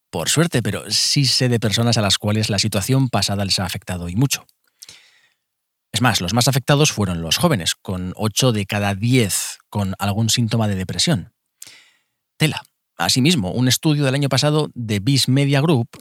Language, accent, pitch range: Spanish, Spanish, 100-135 Hz